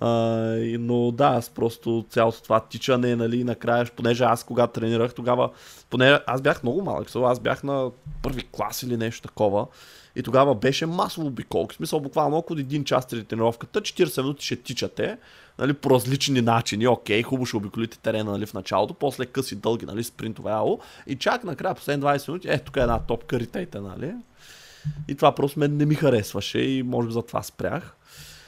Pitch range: 115-140 Hz